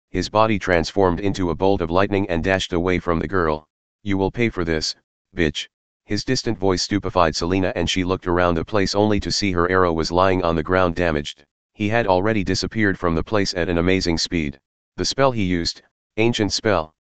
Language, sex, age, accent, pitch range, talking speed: English, male, 30-49, American, 85-100 Hz, 205 wpm